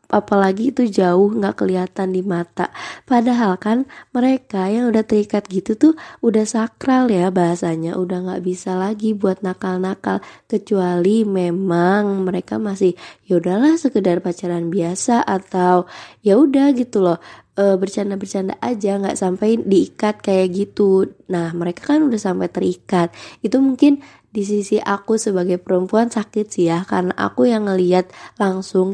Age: 20-39